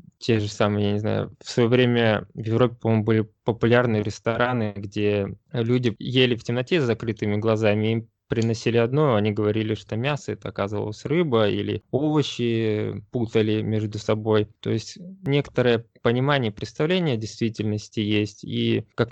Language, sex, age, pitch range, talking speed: Russian, male, 20-39, 105-120 Hz, 150 wpm